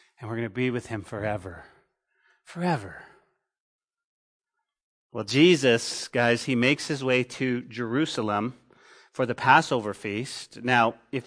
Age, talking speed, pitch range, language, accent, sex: 40-59, 130 wpm, 135-170 Hz, English, American, male